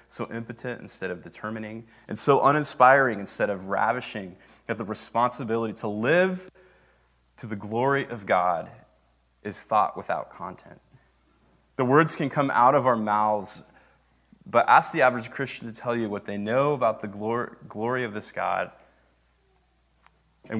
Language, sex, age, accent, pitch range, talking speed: English, male, 30-49, American, 105-125 Hz, 150 wpm